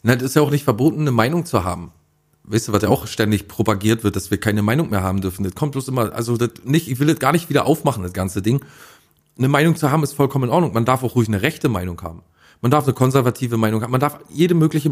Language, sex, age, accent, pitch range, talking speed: German, male, 40-59, German, 105-145 Hz, 275 wpm